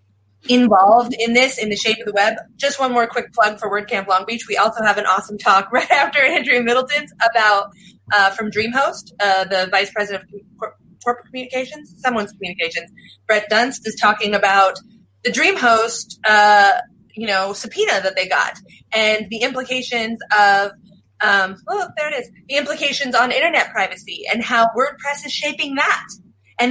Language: English